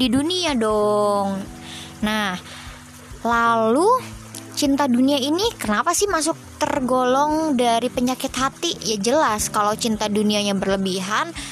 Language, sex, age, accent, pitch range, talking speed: Indonesian, male, 20-39, native, 195-255 Hz, 110 wpm